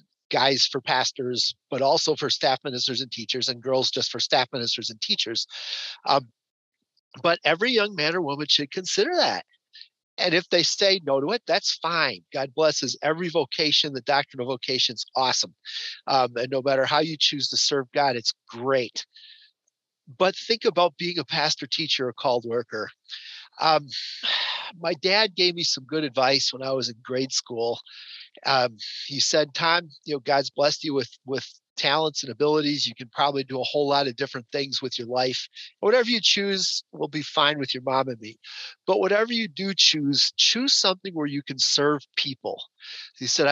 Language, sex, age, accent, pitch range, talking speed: English, male, 40-59, American, 130-165 Hz, 185 wpm